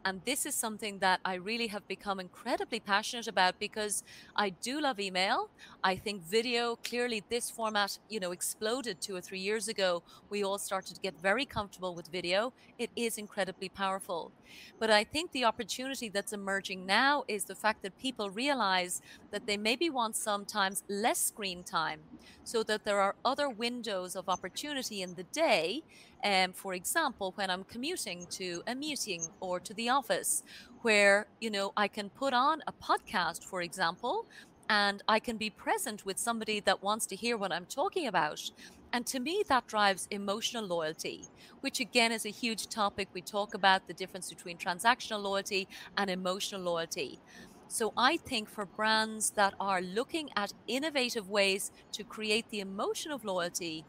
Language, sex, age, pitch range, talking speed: Polish, female, 30-49, 190-235 Hz, 175 wpm